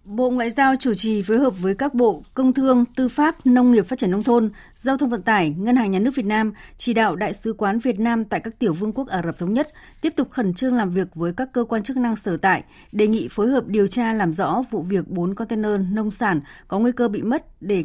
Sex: female